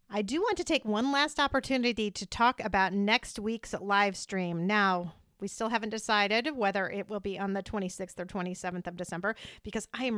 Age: 40-59